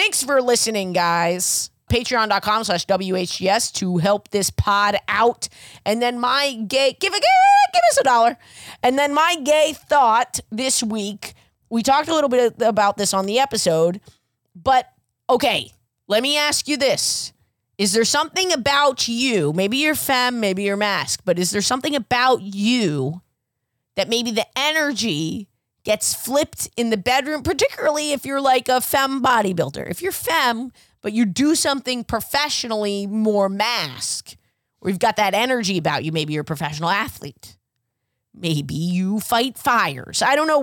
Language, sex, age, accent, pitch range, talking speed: English, female, 20-39, American, 185-275 Hz, 160 wpm